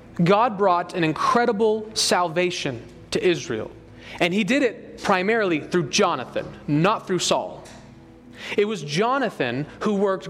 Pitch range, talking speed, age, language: 170-220 Hz, 130 wpm, 30-49, English